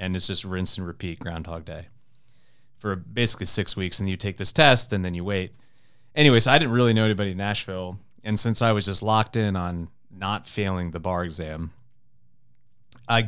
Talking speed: 200 wpm